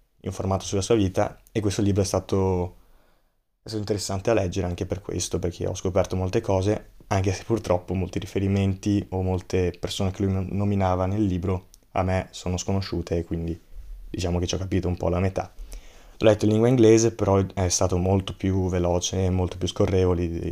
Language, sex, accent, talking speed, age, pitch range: Italian, male, native, 190 wpm, 20-39, 90-100 Hz